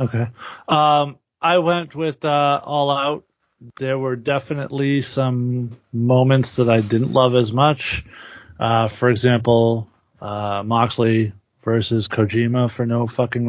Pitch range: 110-130 Hz